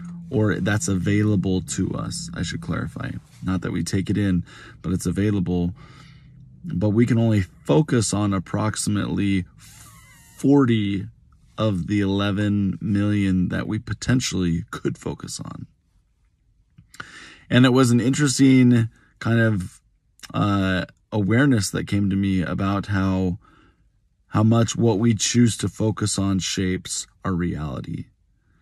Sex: male